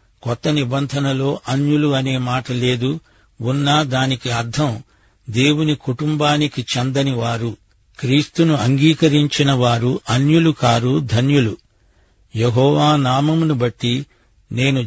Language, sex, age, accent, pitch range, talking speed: Telugu, male, 60-79, native, 120-140 Hz, 95 wpm